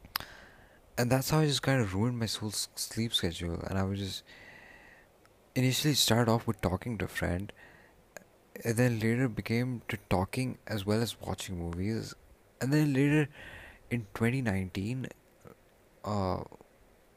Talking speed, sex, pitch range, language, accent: 140 wpm, male, 95-115 Hz, English, Indian